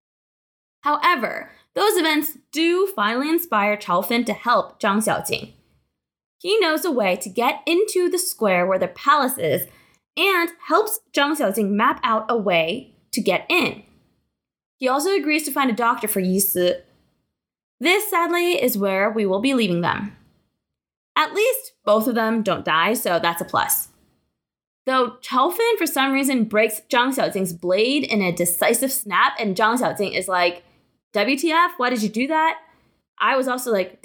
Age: 20-39